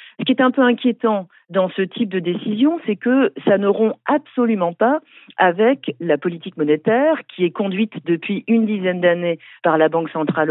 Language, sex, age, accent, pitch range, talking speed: French, female, 50-69, French, 175-245 Hz, 190 wpm